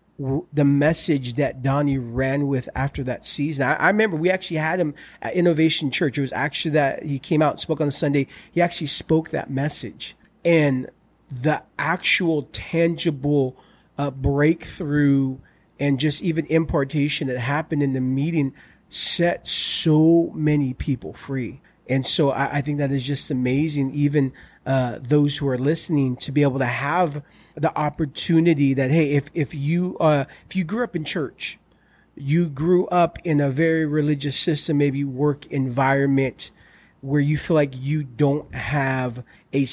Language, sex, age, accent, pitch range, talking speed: English, male, 30-49, American, 135-155 Hz, 165 wpm